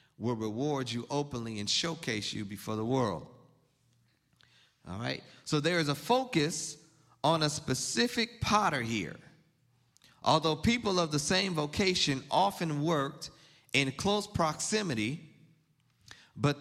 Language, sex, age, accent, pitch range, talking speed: English, male, 40-59, American, 125-170 Hz, 125 wpm